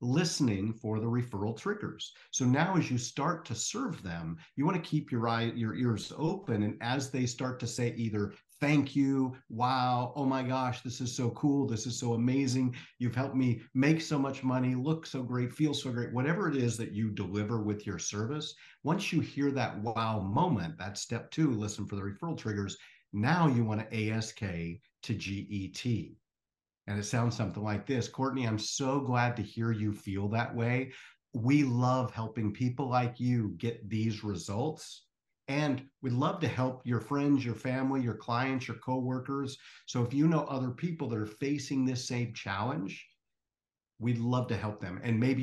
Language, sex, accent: English, male, American